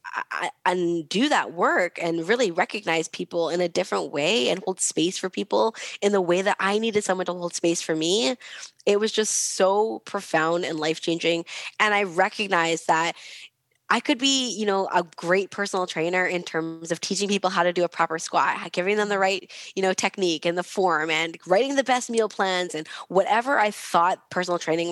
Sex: female